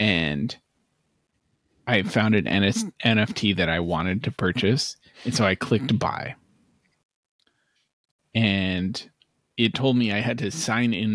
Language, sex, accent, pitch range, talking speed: English, male, American, 100-120 Hz, 135 wpm